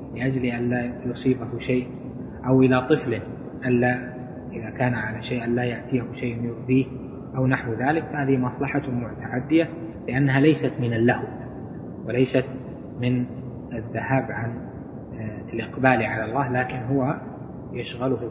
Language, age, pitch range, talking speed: Arabic, 20-39, 125-150 Hz, 120 wpm